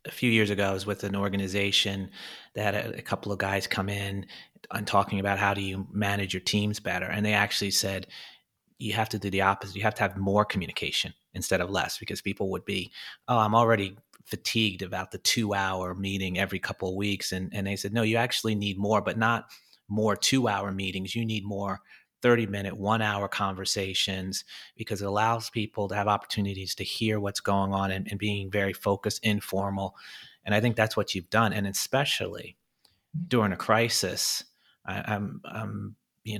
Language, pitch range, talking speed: English, 100-110 Hz, 195 wpm